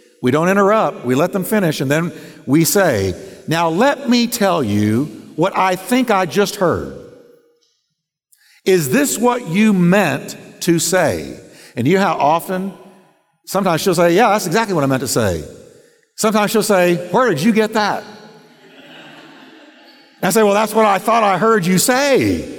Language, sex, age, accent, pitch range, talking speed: English, male, 50-69, American, 165-225 Hz, 175 wpm